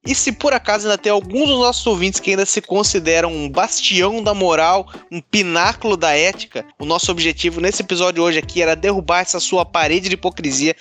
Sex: male